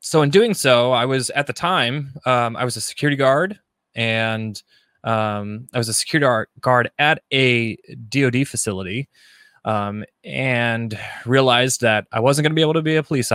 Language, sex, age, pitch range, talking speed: English, male, 20-39, 110-130 Hz, 180 wpm